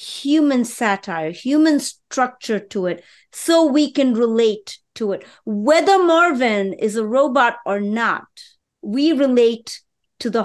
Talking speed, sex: 130 wpm, female